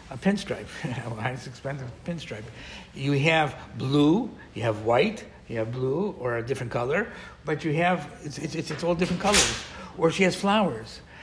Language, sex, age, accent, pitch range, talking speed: English, male, 60-79, American, 135-185 Hz, 175 wpm